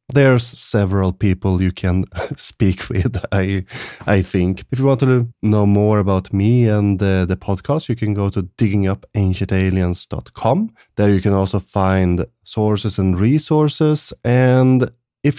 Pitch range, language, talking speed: 100-135 Hz, English, 145 wpm